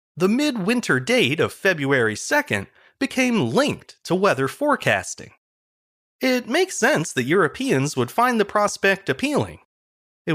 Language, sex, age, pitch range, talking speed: English, male, 30-49, 140-230 Hz, 130 wpm